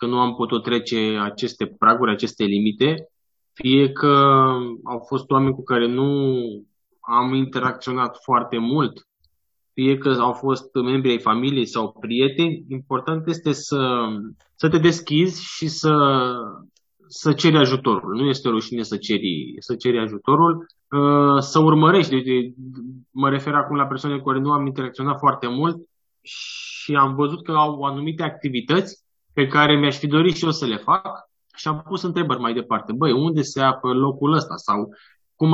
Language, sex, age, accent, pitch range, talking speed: Romanian, male, 20-39, native, 120-150 Hz, 160 wpm